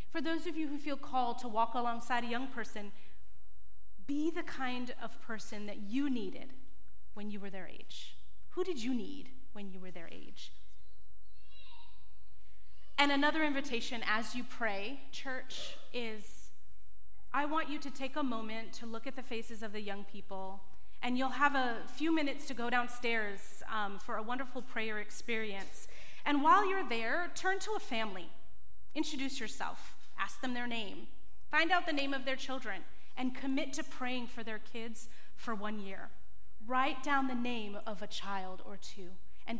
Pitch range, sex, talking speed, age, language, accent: 210-265 Hz, female, 175 wpm, 30-49, English, American